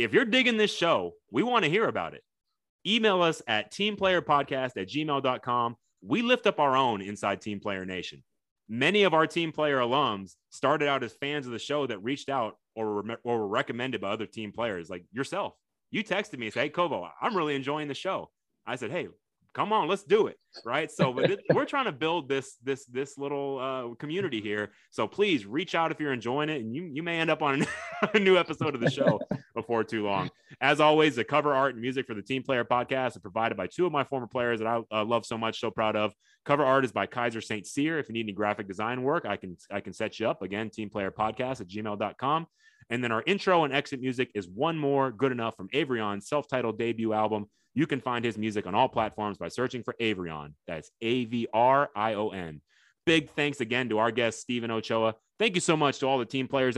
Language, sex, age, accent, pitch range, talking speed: English, male, 30-49, American, 110-150 Hz, 235 wpm